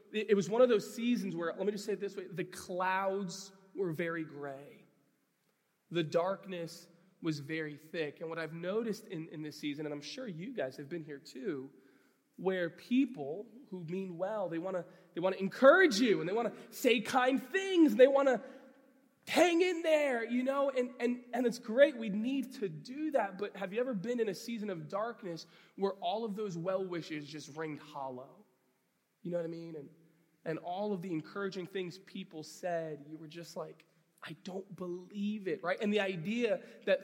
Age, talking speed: 20-39, 200 wpm